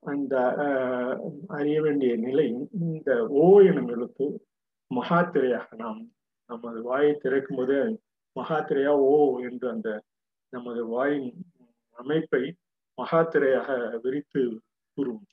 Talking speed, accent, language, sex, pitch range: 95 wpm, native, Tamil, male, 125-155 Hz